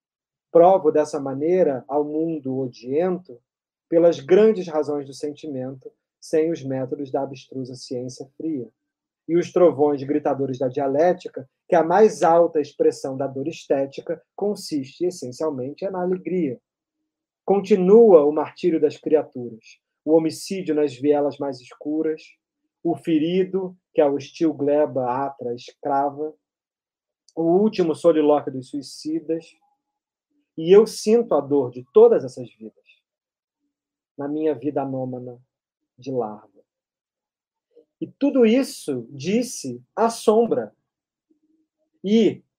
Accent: Brazilian